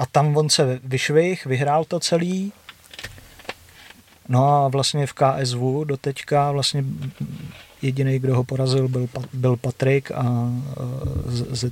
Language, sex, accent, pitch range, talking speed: Czech, male, native, 120-140 Hz, 125 wpm